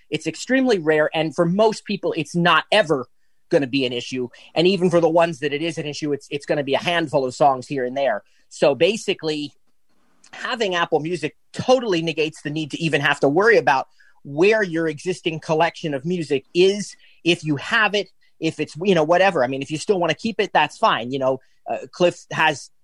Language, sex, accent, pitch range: English, male, American, 155-190 Hz